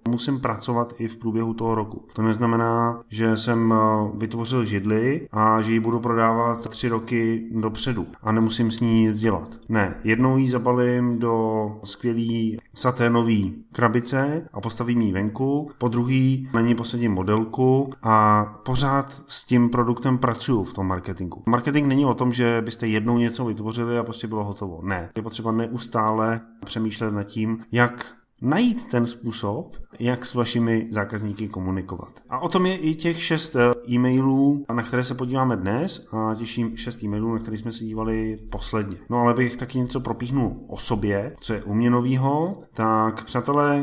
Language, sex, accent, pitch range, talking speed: Czech, male, native, 110-125 Hz, 160 wpm